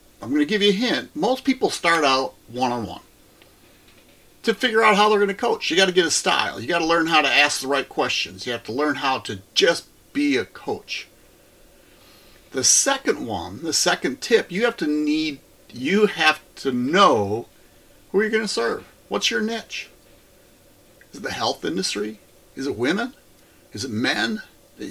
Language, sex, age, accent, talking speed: English, male, 50-69, American, 195 wpm